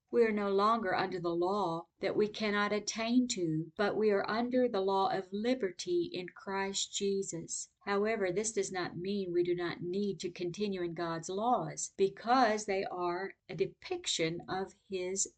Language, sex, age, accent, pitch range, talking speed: English, female, 50-69, American, 175-205 Hz, 170 wpm